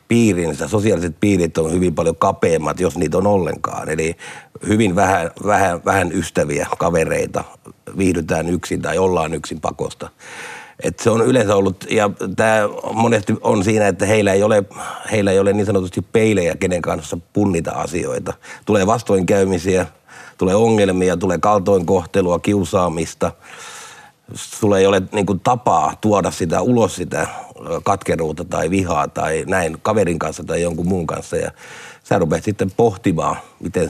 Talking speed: 135 wpm